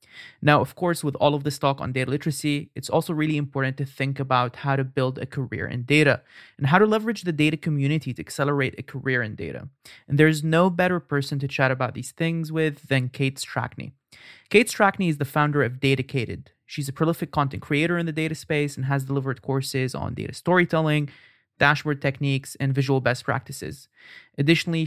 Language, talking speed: English, 200 wpm